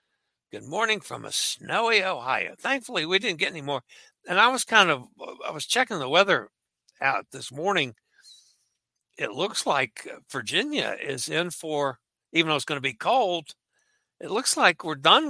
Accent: American